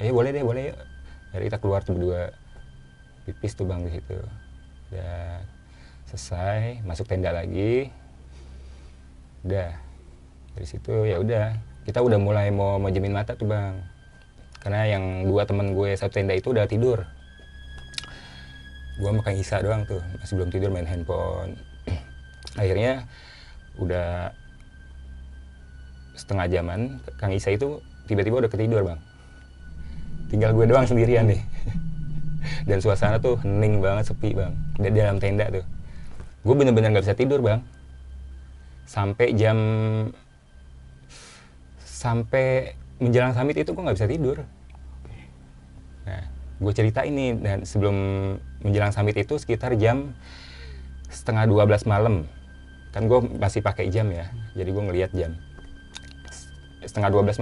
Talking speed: 125 wpm